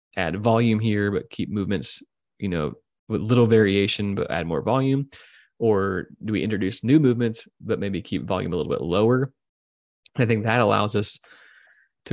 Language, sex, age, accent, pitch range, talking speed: English, male, 20-39, American, 95-115 Hz, 175 wpm